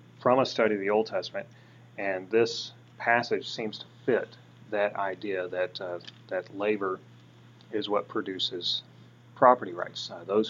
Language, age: English, 30-49